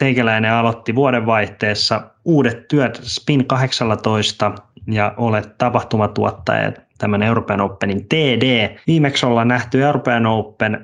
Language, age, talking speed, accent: Finnish, 20-39, 105 wpm, native